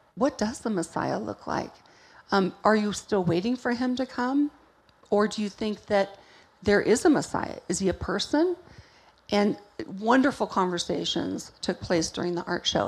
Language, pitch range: English, 185-215 Hz